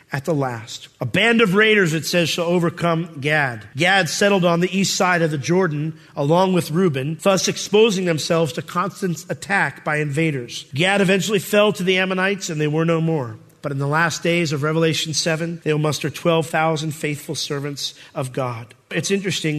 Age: 40-59